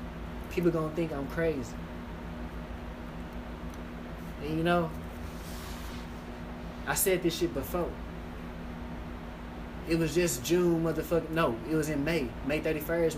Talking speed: 115 wpm